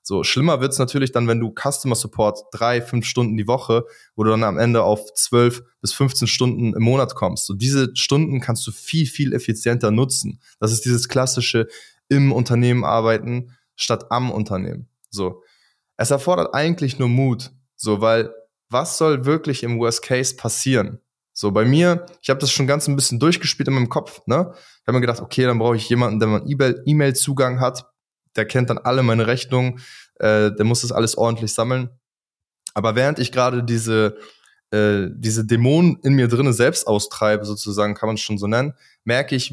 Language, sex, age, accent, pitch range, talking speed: German, male, 20-39, German, 110-135 Hz, 190 wpm